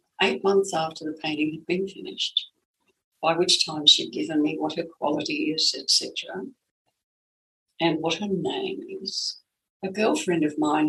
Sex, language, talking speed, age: female, English, 155 wpm, 60-79